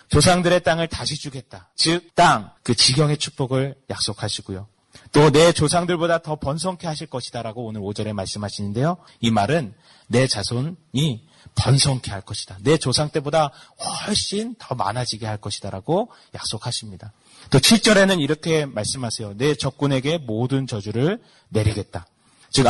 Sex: male